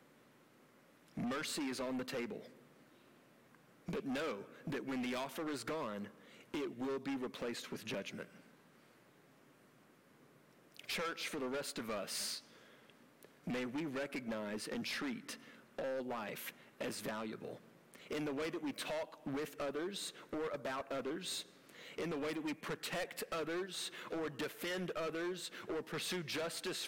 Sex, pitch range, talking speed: male, 125-165 Hz, 130 wpm